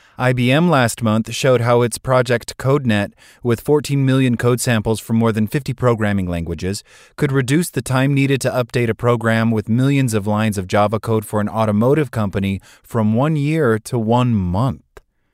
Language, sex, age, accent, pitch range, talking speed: English, male, 30-49, American, 100-130 Hz, 175 wpm